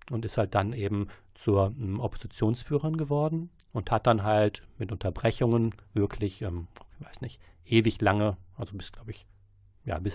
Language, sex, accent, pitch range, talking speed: German, male, German, 95-110 Hz, 165 wpm